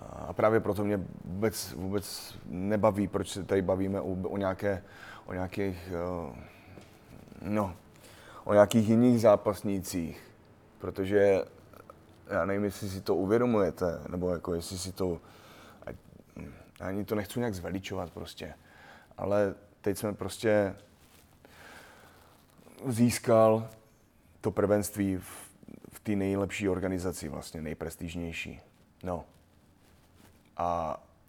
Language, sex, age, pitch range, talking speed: Slovak, male, 20-39, 90-105 Hz, 105 wpm